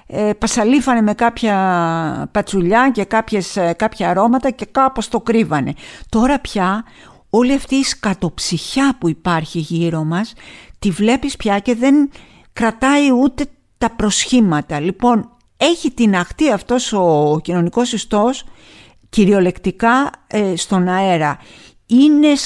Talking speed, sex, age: 115 wpm, female, 50-69